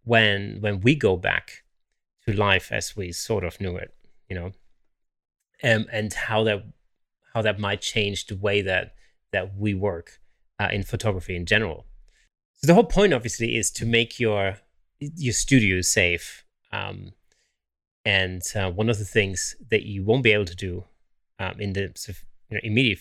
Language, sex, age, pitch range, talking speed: English, male, 30-49, 95-115 Hz, 165 wpm